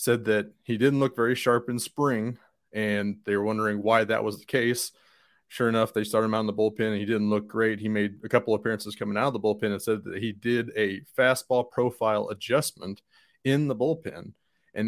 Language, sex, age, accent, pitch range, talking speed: English, male, 30-49, American, 110-130 Hz, 225 wpm